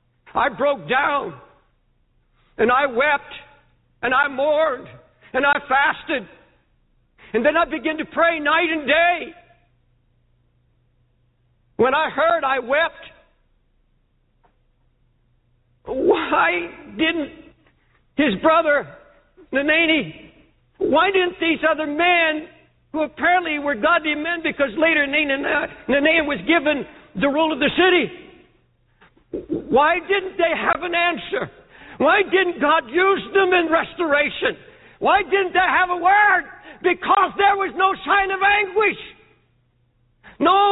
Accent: American